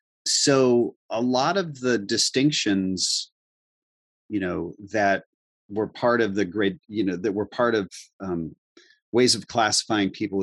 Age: 30-49